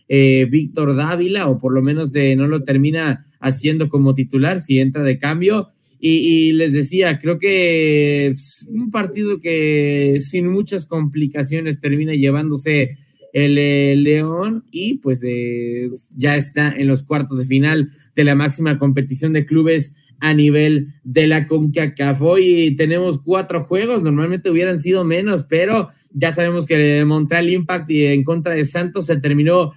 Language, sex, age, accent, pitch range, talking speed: Spanish, male, 20-39, Mexican, 145-175 Hz, 155 wpm